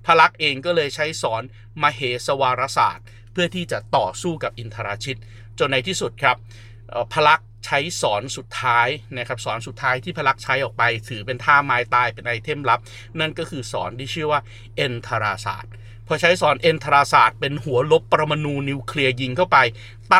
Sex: male